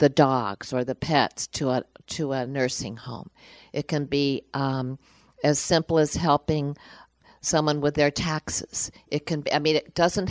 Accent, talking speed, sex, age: American, 175 wpm, female, 50-69